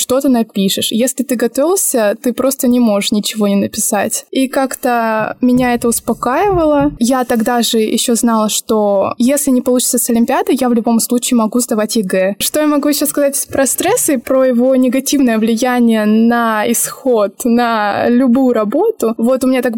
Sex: female